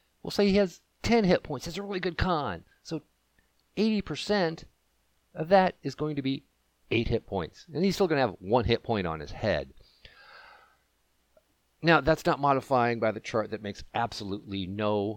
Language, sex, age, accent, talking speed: English, male, 50-69, American, 185 wpm